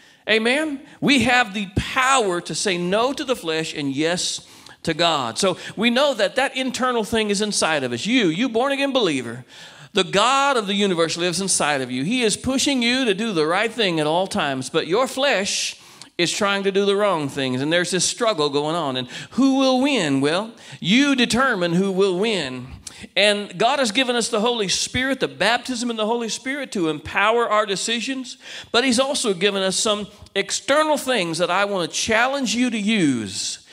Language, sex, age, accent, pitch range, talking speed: English, male, 40-59, American, 170-245 Hz, 200 wpm